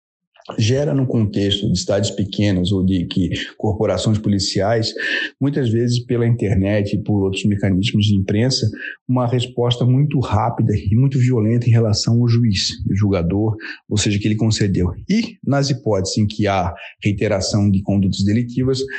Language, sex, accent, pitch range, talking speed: Portuguese, male, Brazilian, 105-130 Hz, 150 wpm